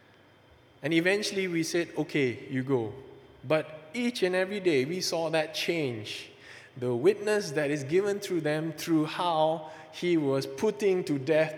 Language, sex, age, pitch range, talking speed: English, male, 20-39, 120-155 Hz, 155 wpm